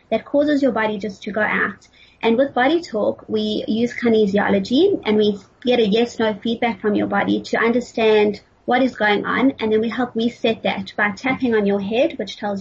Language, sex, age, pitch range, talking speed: English, female, 30-49, 210-250 Hz, 205 wpm